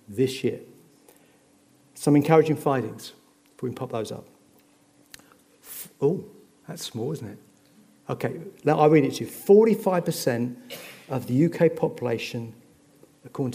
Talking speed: 130 wpm